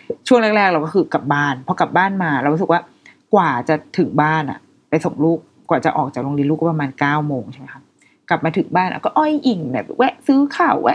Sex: female